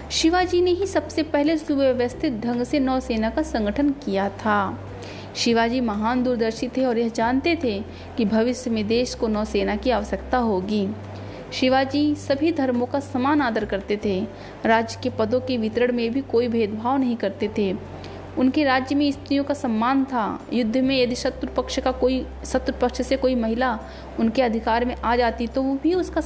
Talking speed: 180 wpm